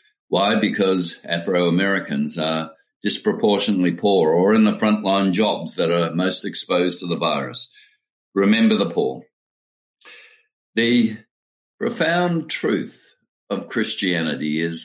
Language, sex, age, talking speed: English, male, 50-69, 110 wpm